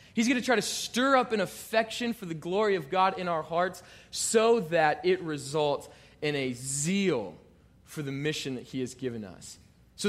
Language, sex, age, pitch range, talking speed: English, male, 20-39, 135-185 Hz, 195 wpm